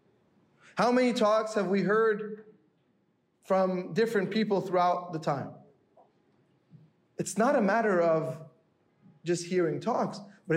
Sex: male